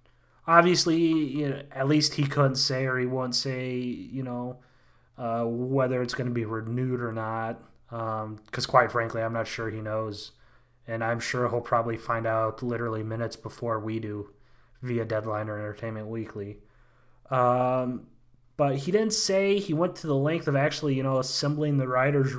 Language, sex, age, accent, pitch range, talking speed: English, male, 20-39, American, 115-135 Hz, 170 wpm